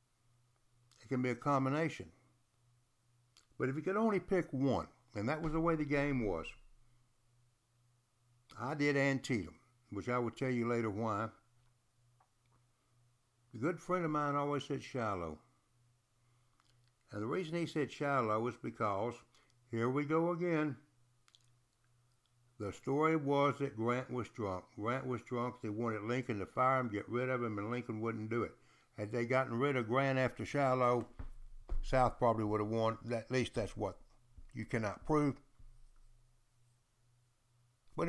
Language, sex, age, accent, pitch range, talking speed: English, male, 60-79, American, 120-130 Hz, 150 wpm